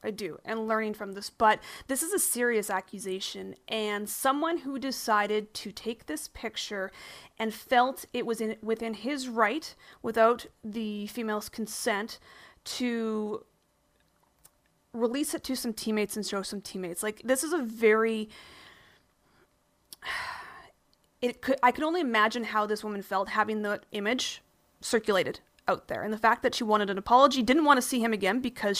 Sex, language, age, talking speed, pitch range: female, English, 30-49, 165 wpm, 210-245 Hz